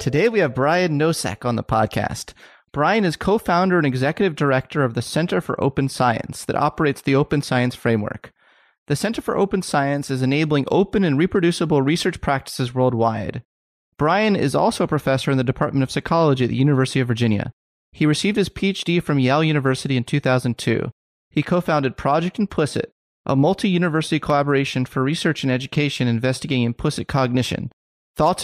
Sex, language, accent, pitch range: male, English, American, 125-155 Hz